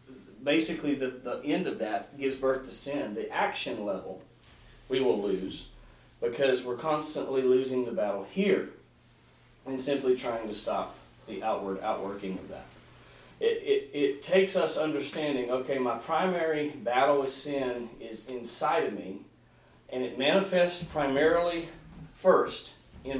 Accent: American